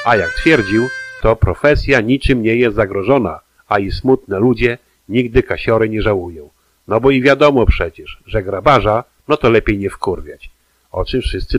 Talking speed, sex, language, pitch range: 165 wpm, male, Polish, 100-130 Hz